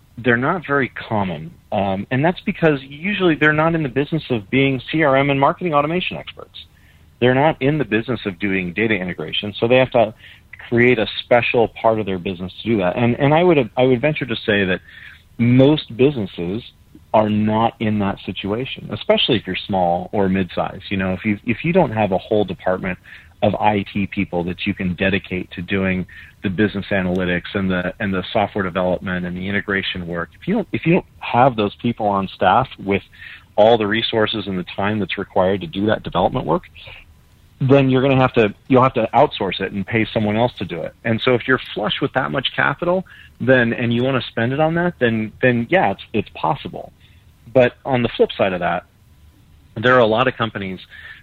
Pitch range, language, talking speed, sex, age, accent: 95-130 Hz, English, 210 wpm, male, 40-59, American